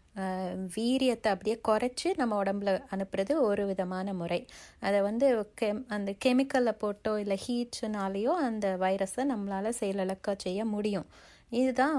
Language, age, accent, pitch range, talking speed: Tamil, 30-49, native, 195-235 Hz, 115 wpm